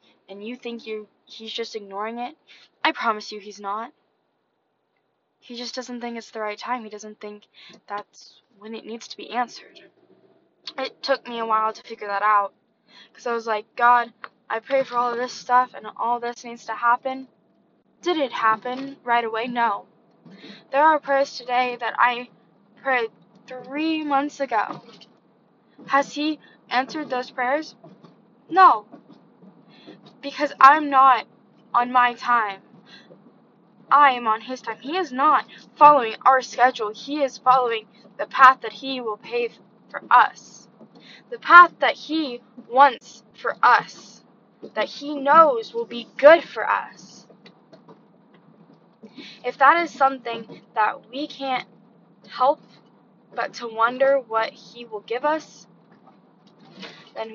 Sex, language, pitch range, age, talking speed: female, English, 220-270 Hz, 10-29, 145 wpm